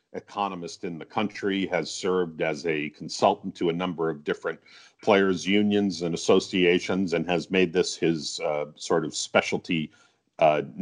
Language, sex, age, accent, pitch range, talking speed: English, male, 50-69, American, 85-100 Hz, 155 wpm